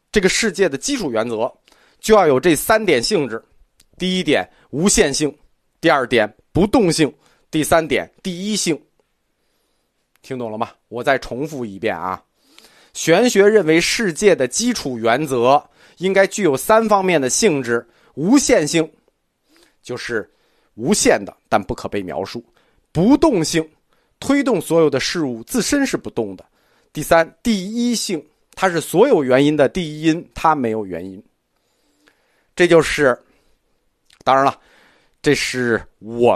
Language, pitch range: Chinese, 125-205 Hz